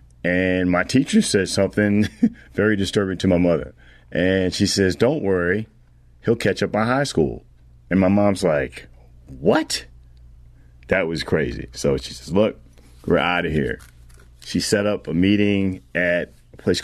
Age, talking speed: 40-59, 160 wpm